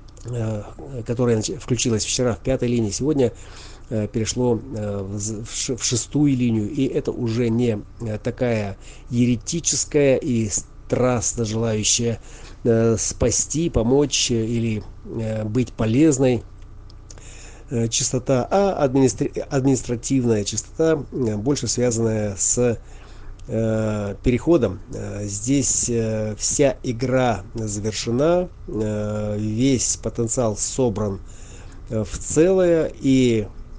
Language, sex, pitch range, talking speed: Russian, male, 105-125 Hz, 80 wpm